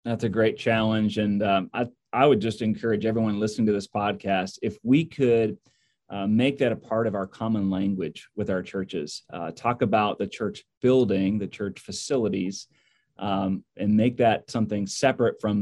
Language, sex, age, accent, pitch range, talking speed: English, male, 30-49, American, 100-115 Hz, 180 wpm